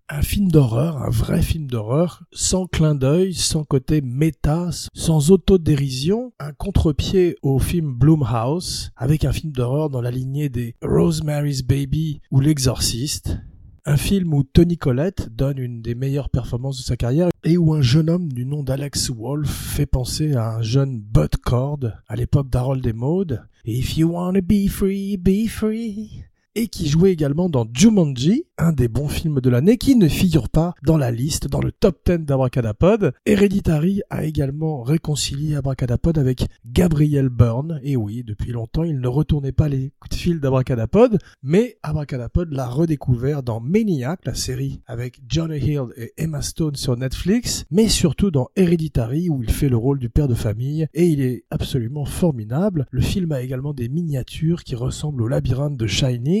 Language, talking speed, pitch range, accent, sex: French, 175 wpm, 125-165 Hz, French, male